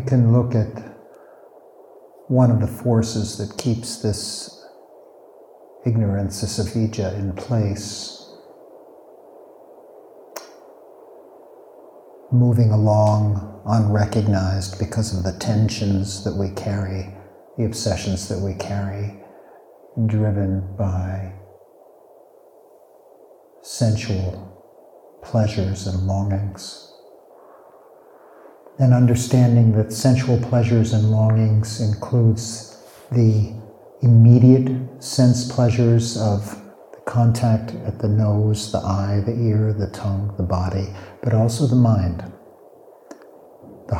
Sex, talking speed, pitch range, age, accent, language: male, 95 wpm, 105-130 Hz, 50-69, American, English